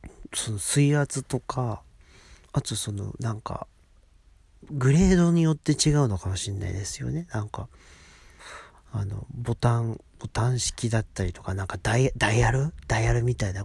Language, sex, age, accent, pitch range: Japanese, male, 40-59, native, 95-135 Hz